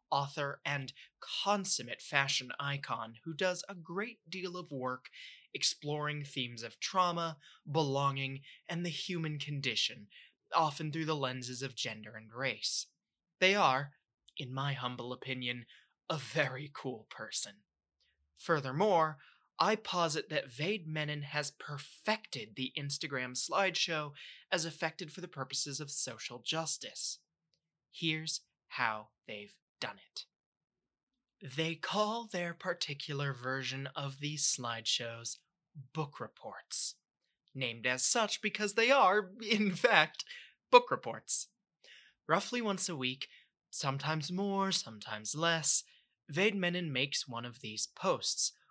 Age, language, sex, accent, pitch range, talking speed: 20-39, English, male, American, 130-170 Hz, 120 wpm